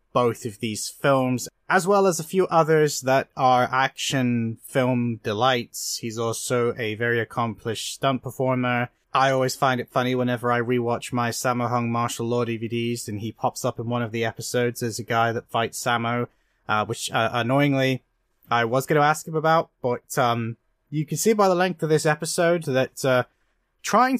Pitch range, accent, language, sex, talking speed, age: 120-155 Hz, British, English, male, 190 wpm, 20-39